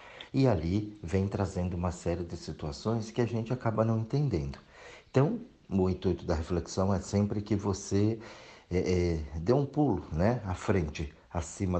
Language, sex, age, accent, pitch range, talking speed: Portuguese, male, 50-69, Brazilian, 85-115 Hz, 165 wpm